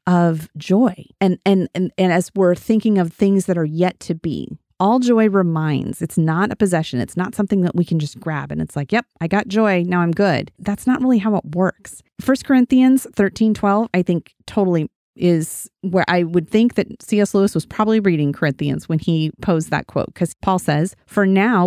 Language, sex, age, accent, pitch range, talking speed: English, female, 30-49, American, 165-205 Hz, 210 wpm